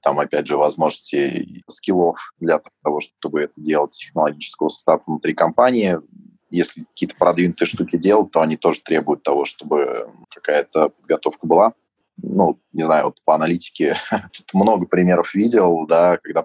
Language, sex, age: Russian, male, 20-39